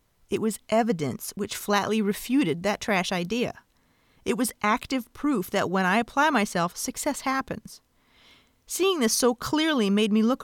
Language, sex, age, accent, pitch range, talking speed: English, female, 40-59, American, 185-230 Hz, 155 wpm